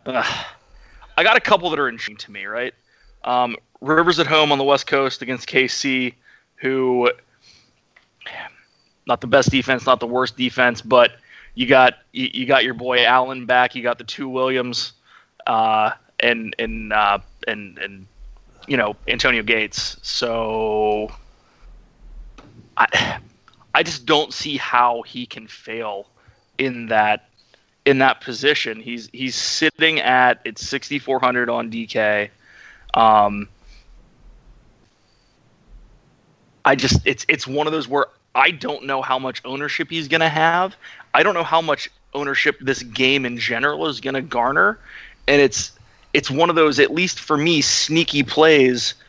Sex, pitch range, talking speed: male, 115-140 Hz, 145 wpm